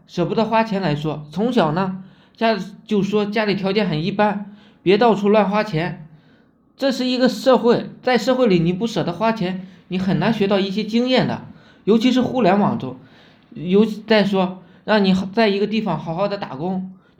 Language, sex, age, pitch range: Chinese, male, 20-39, 175-220 Hz